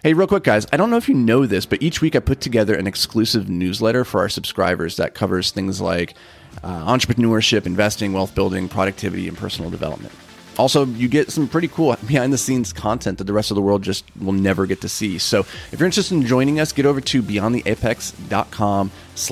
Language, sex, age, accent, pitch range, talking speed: English, male, 30-49, American, 95-125 Hz, 215 wpm